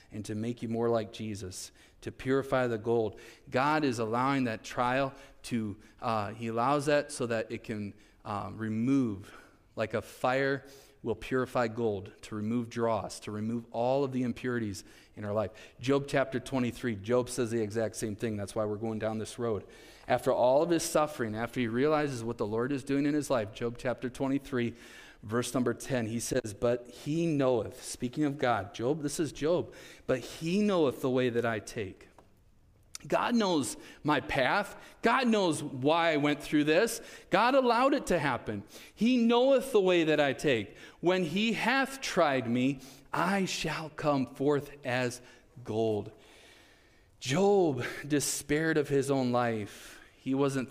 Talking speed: 170 wpm